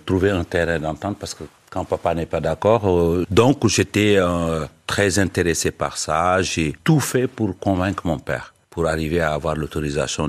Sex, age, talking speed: male, 60-79, 180 wpm